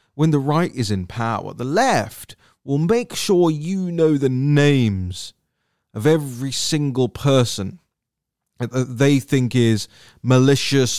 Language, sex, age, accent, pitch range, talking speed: English, male, 30-49, British, 110-155 Hz, 130 wpm